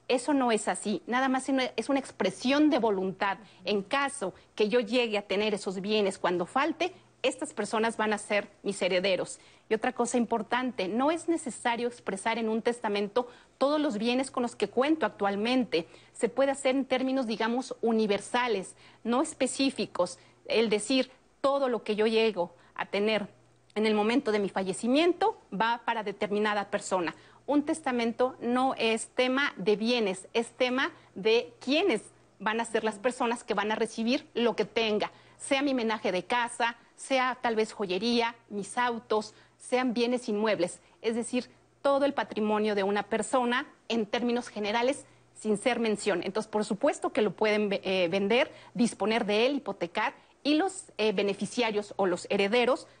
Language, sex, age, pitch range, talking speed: Spanish, female, 40-59, 205-255 Hz, 165 wpm